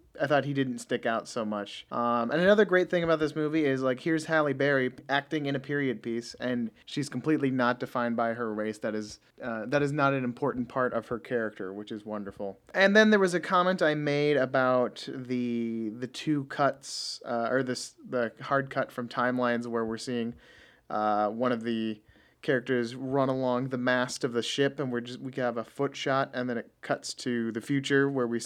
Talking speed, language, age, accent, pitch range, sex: 215 wpm, English, 30-49, American, 120-145 Hz, male